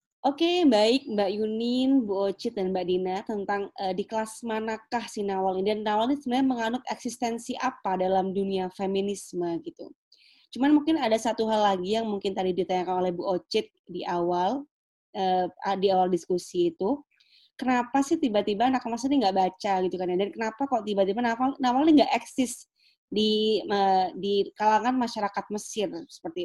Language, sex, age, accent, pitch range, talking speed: Indonesian, female, 20-39, native, 200-255 Hz, 165 wpm